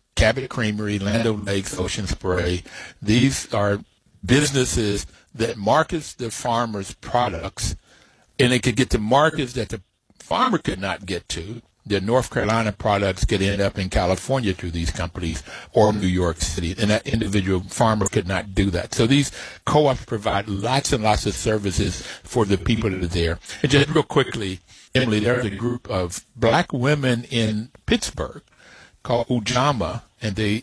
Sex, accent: male, American